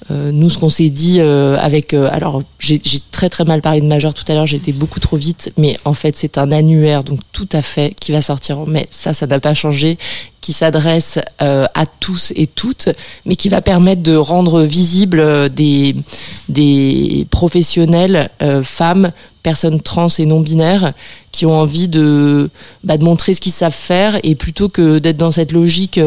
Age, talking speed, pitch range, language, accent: 20-39, 195 wpm, 145-175 Hz, French, French